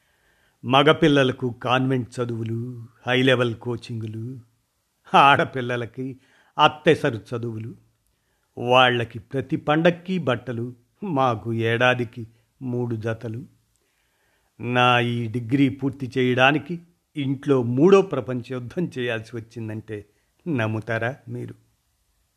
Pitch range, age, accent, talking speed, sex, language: 120-140 Hz, 50-69, native, 80 wpm, male, Telugu